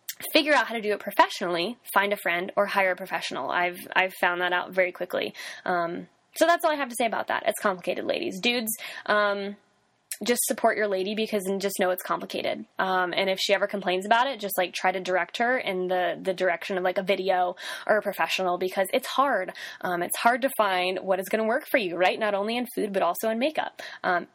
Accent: American